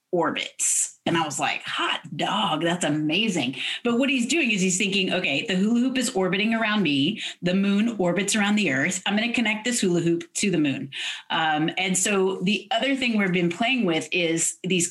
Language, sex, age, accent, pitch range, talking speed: English, female, 30-49, American, 170-225 Hz, 205 wpm